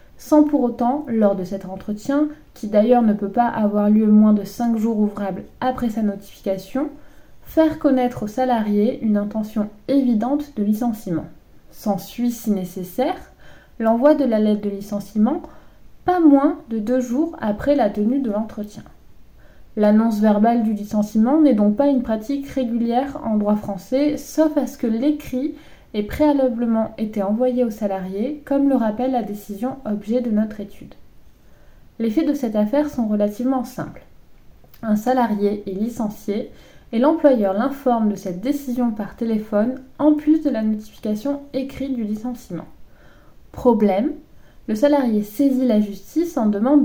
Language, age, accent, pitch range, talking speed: English, 20-39, French, 210-270 Hz, 155 wpm